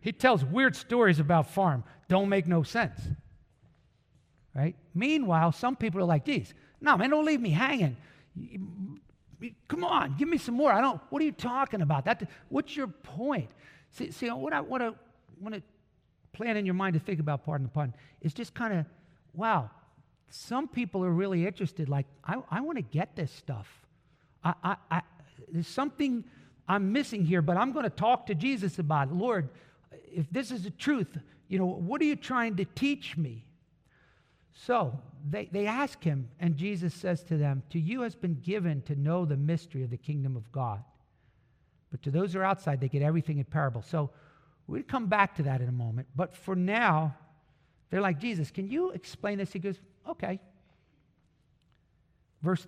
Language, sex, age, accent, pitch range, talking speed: English, male, 50-69, American, 150-210 Hz, 190 wpm